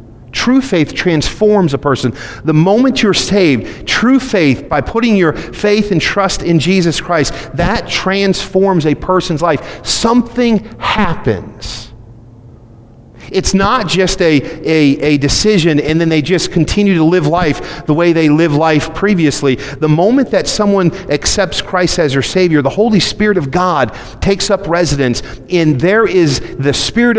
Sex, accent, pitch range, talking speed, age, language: male, American, 120-175 Hz, 155 wpm, 40-59, English